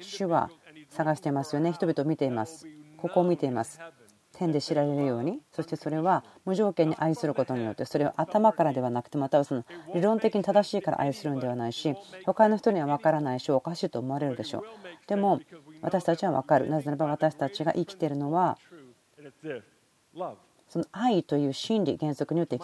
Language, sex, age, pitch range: Japanese, female, 40-59, 135-170 Hz